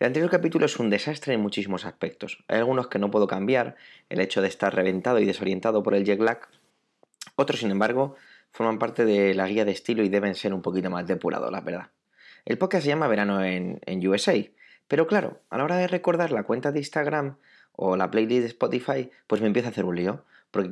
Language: Spanish